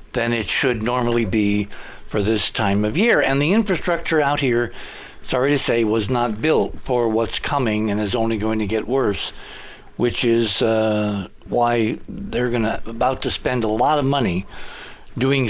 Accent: American